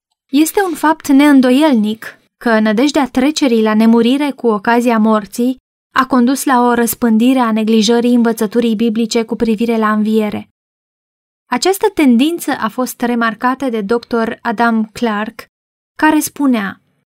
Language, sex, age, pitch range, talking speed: Romanian, female, 20-39, 225-275 Hz, 125 wpm